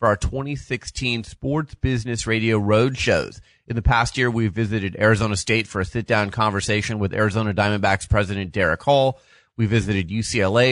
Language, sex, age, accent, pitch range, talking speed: English, male, 30-49, American, 110-135 Hz, 170 wpm